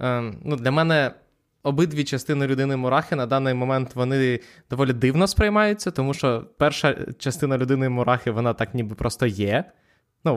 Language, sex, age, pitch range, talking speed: Ukrainian, male, 20-39, 120-150 Hz, 140 wpm